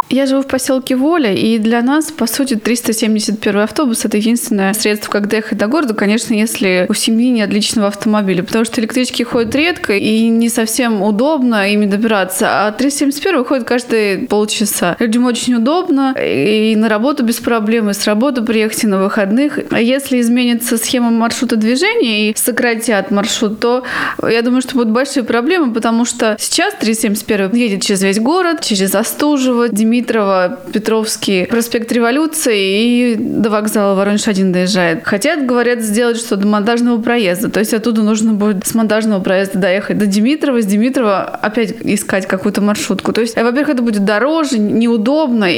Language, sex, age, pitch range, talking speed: Russian, female, 20-39, 210-250 Hz, 160 wpm